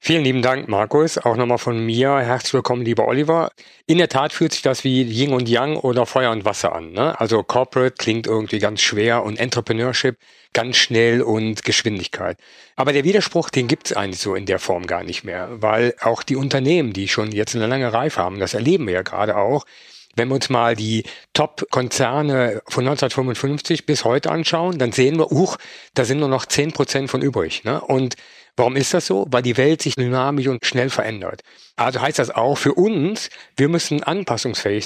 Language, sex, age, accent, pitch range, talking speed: German, male, 50-69, German, 120-150 Hz, 200 wpm